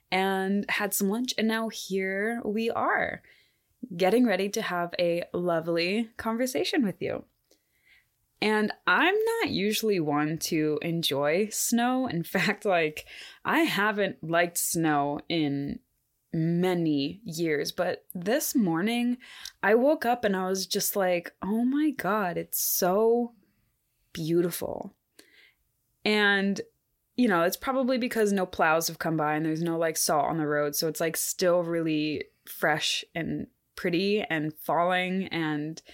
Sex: female